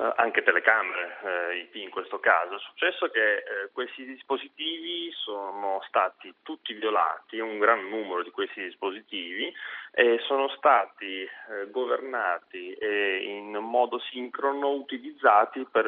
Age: 30-49